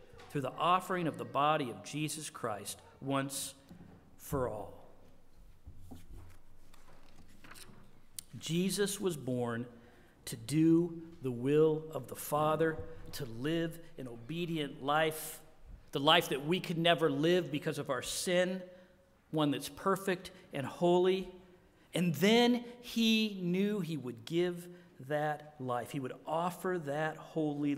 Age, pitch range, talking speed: 50-69, 130-185 Hz, 125 wpm